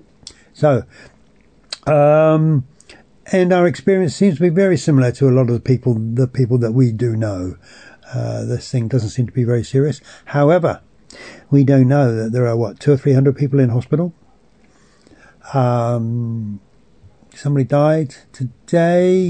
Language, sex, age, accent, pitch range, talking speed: English, male, 60-79, British, 115-145 Hz, 155 wpm